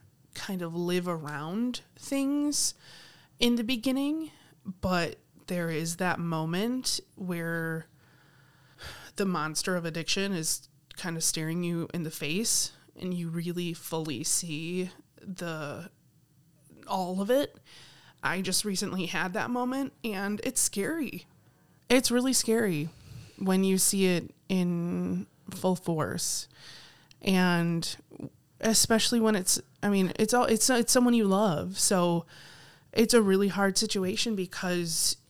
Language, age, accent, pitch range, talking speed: English, 20-39, American, 165-200 Hz, 125 wpm